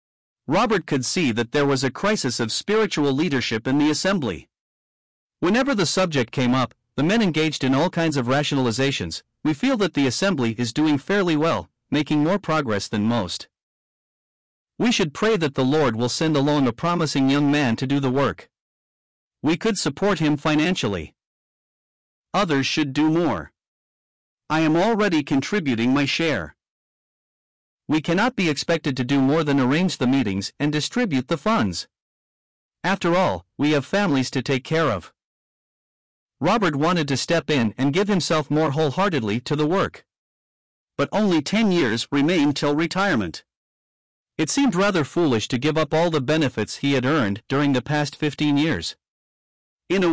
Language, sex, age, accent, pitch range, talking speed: English, male, 50-69, American, 130-170 Hz, 165 wpm